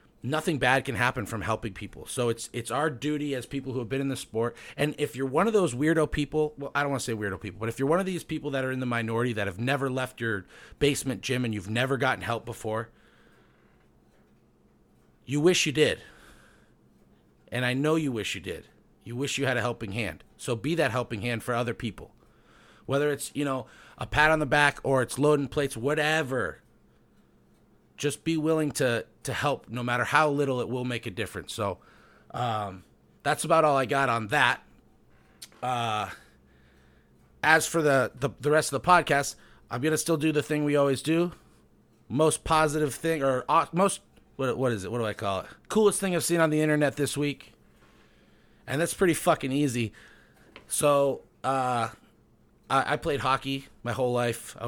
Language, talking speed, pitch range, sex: English, 205 wpm, 115-150 Hz, male